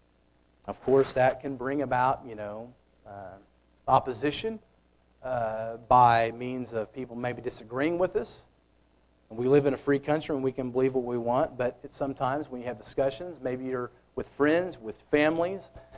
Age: 40-59